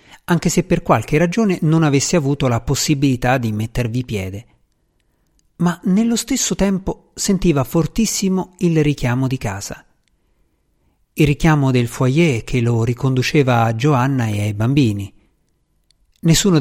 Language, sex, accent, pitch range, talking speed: Italian, male, native, 120-160 Hz, 130 wpm